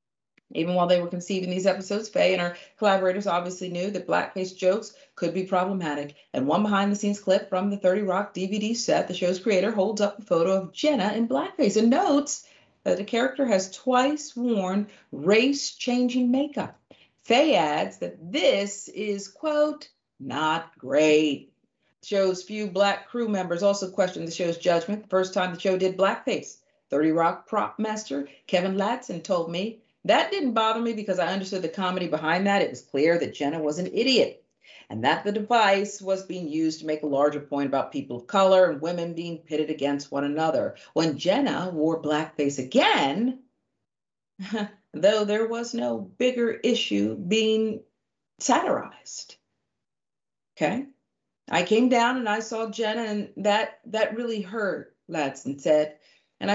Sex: female